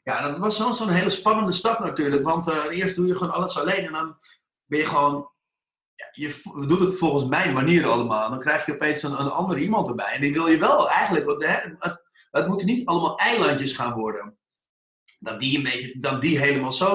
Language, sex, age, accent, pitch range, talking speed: Dutch, male, 30-49, Dutch, 145-185 Hz, 225 wpm